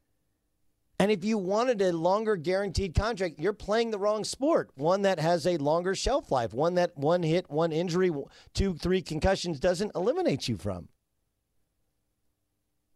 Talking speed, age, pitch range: 155 wpm, 40-59, 145-190 Hz